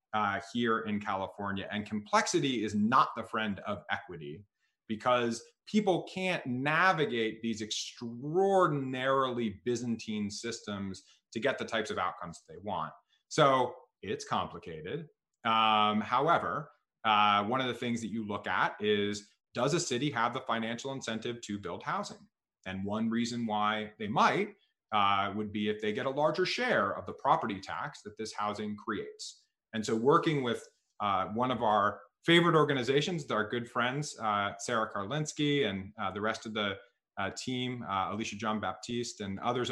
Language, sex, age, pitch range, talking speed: English, male, 30-49, 105-150 Hz, 160 wpm